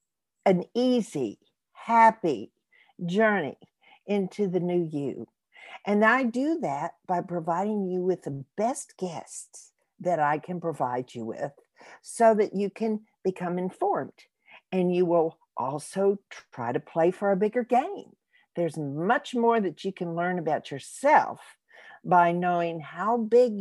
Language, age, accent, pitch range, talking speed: English, 50-69, American, 160-225 Hz, 140 wpm